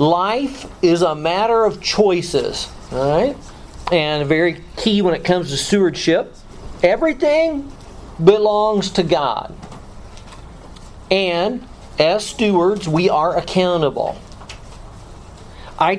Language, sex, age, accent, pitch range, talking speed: English, male, 40-59, American, 130-190 Hz, 100 wpm